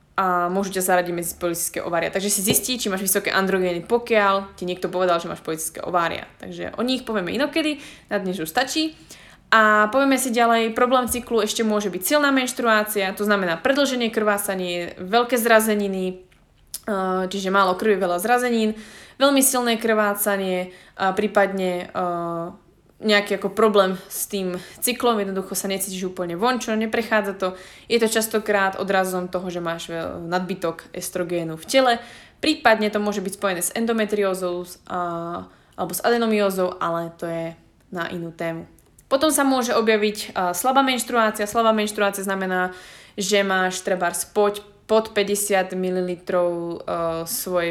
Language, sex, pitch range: Slovak, female, 185-225 Hz